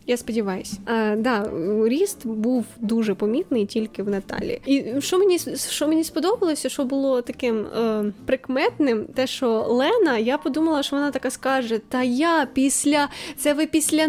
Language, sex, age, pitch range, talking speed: Ukrainian, female, 10-29, 225-295 Hz, 160 wpm